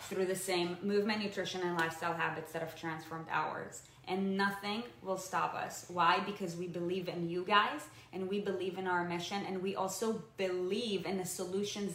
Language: English